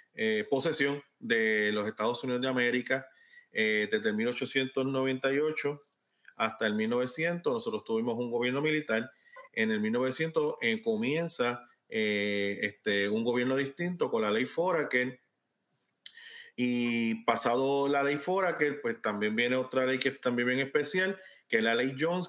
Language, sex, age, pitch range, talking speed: Spanish, male, 30-49, 120-175 Hz, 140 wpm